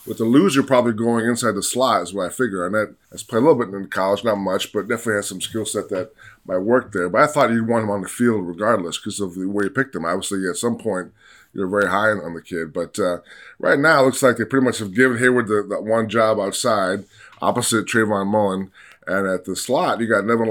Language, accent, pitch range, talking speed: English, American, 95-115 Hz, 260 wpm